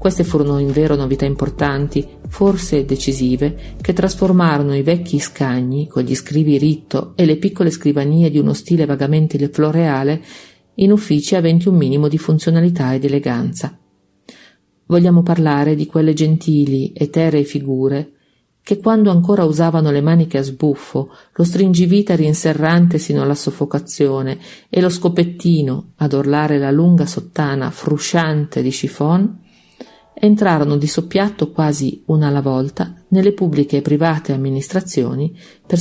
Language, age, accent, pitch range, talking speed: Italian, 50-69, native, 140-175 Hz, 135 wpm